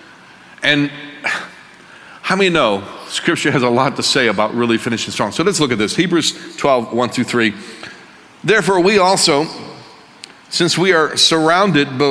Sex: male